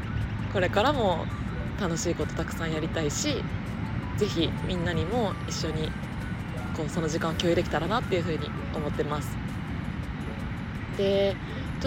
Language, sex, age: Japanese, female, 20-39